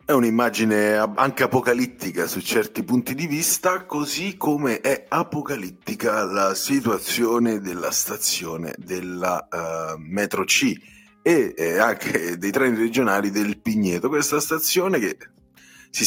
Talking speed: 125 wpm